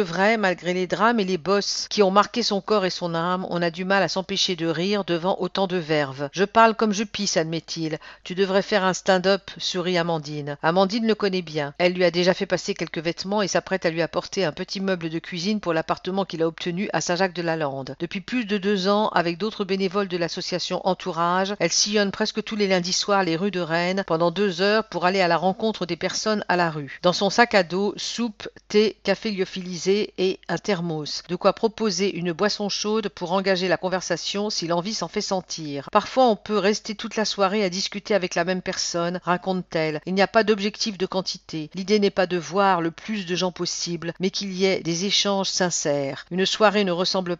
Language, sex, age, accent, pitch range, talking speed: English, female, 50-69, French, 175-205 Hz, 220 wpm